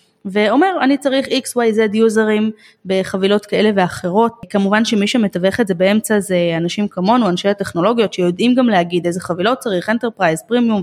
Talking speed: 150 wpm